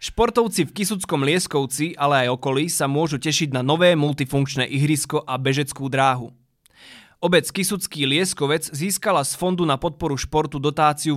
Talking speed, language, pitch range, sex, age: 145 wpm, Slovak, 135-165 Hz, male, 20-39